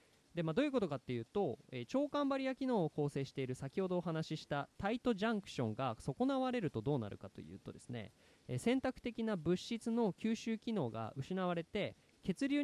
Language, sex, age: Japanese, male, 20-39